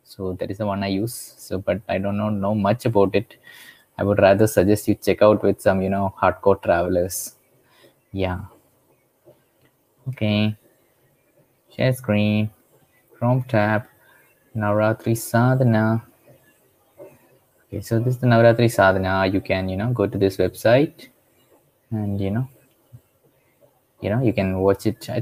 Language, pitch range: English, 100-115 Hz